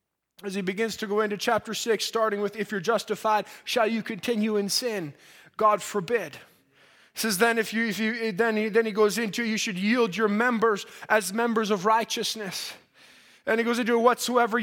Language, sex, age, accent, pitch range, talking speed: English, male, 20-39, American, 225-265 Hz, 195 wpm